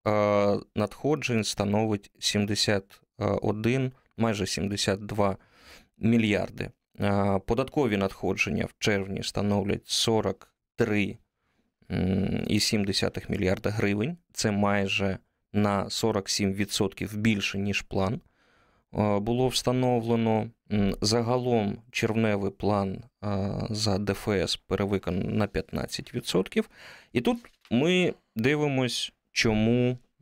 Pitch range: 100-115 Hz